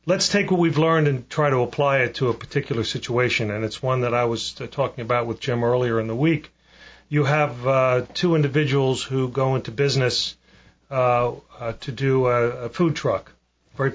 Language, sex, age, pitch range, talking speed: English, male, 40-59, 115-145 Hz, 200 wpm